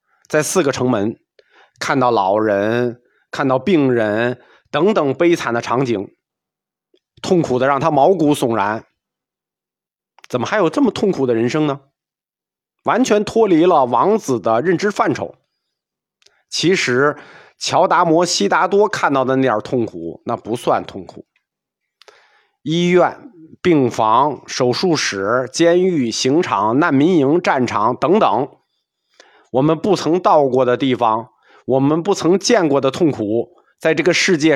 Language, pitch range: Chinese, 120-180 Hz